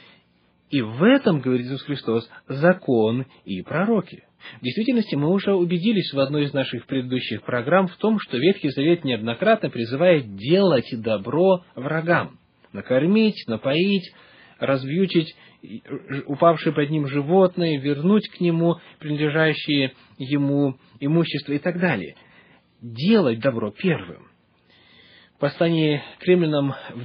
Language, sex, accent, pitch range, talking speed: Russian, male, native, 130-175 Hz, 120 wpm